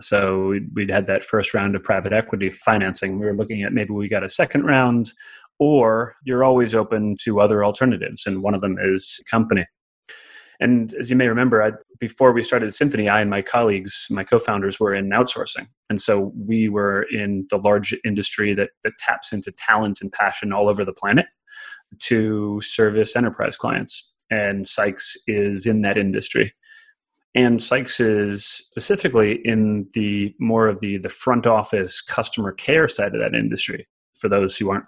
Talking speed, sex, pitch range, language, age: 175 wpm, male, 100-120 Hz, English, 30-49